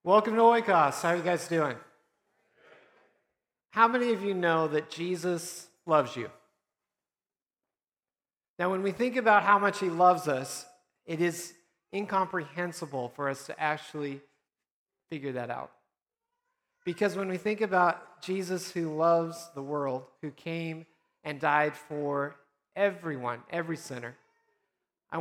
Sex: male